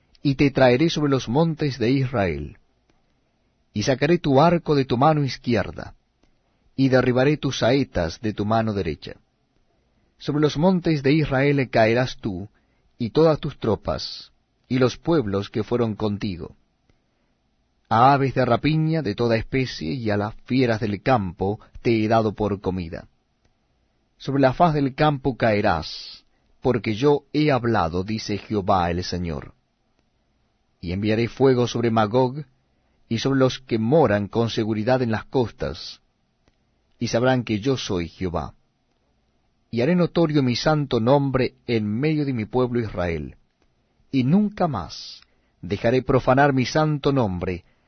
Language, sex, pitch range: Spanish, male, 105-140 Hz